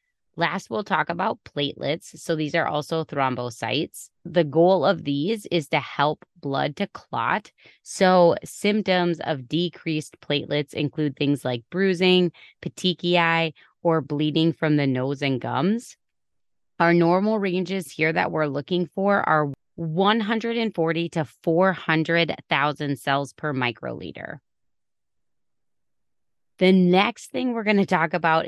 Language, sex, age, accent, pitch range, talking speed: English, female, 20-39, American, 145-180 Hz, 130 wpm